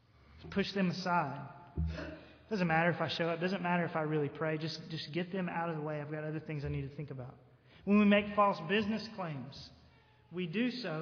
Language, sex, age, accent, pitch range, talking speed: English, male, 30-49, American, 155-200 Hz, 225 wpm